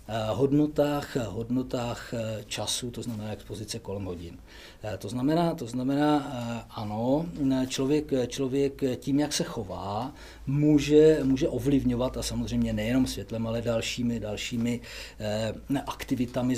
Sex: male